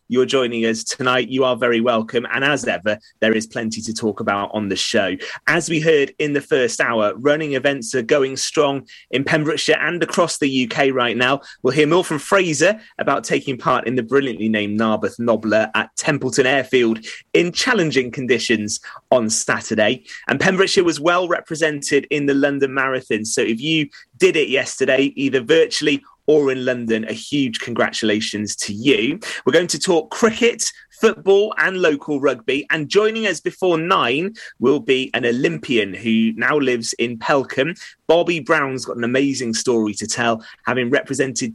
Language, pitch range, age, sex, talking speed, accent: English, 115-160 Hz, 30-49, male, 175 wpm, British